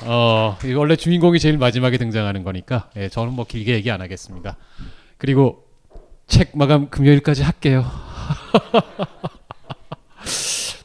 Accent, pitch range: native, 100-140 Hz